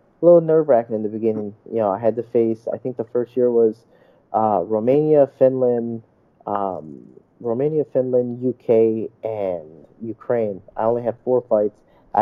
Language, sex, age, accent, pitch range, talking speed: English, male, 20-39, American, 105-125 Hz, 160 wpm